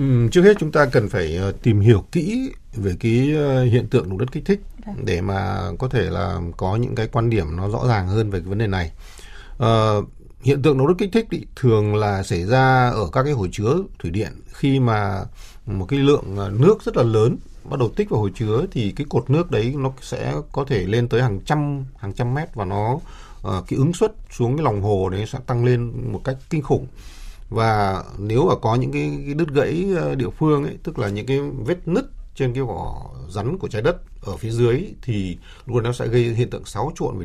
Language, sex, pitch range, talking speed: Vietnamese, male, 105-145 Hz, 225 wpm